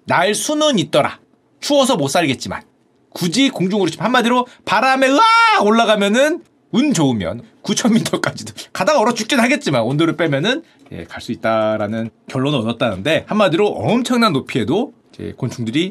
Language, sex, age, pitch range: Korean, male, 40-59, 165-245 Hz